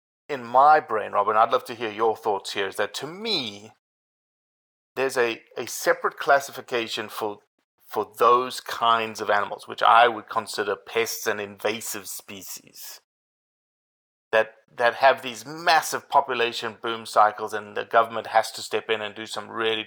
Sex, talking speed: male, 160 wpm